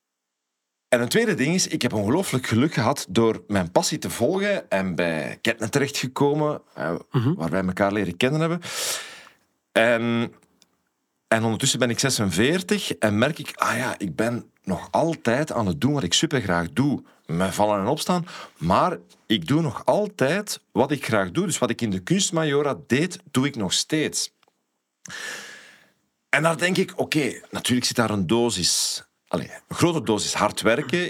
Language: Dutch